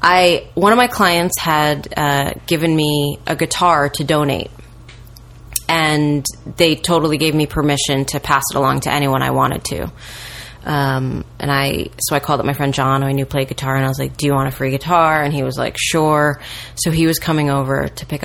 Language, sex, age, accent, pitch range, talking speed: English, female, 20-39, American, 130-170 Hz, 215 wpm